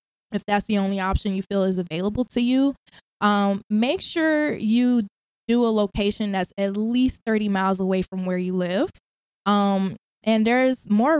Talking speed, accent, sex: 170 wpm, American, female